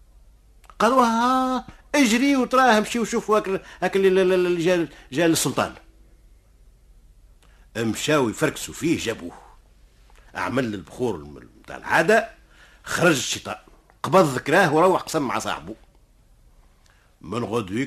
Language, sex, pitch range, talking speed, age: Arabic, male, 110-180 Hz, 90 wpm, 50-69